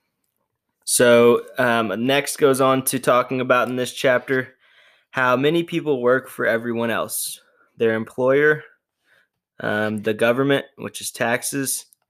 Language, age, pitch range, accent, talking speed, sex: English, 20-39, 115-130 Hz, American, 130 wpm, male